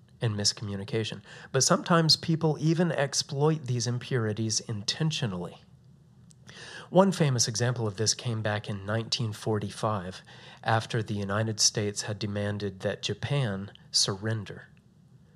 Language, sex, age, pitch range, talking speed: English, male, 40-59, 110-135 Hz, 110 wpm